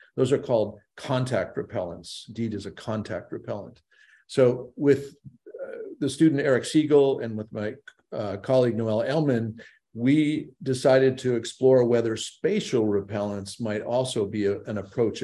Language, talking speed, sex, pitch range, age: English, 140 wpm, male, 110-130 Hz, 50-69